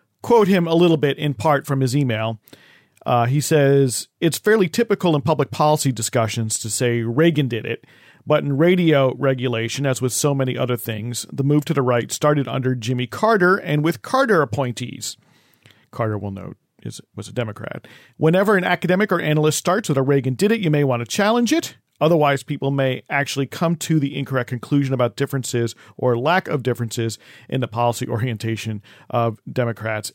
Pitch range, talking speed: 120-160 Hz, 185 wpm